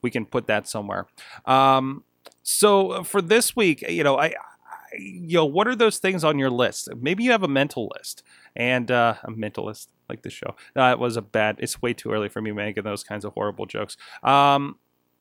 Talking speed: 215 wpm